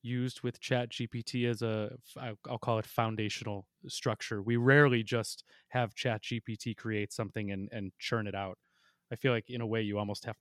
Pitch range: 110-125 Hz